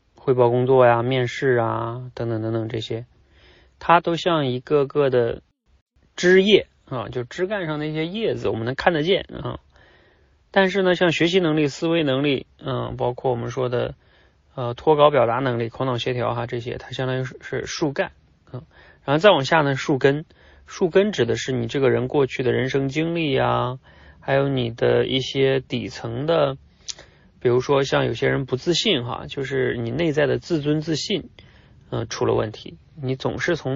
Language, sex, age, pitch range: Chinese, male, 30-49, 120-145 Hz